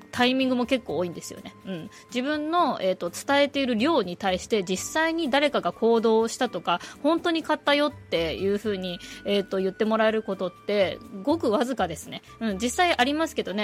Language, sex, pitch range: Japanese, female, 190-250 Hz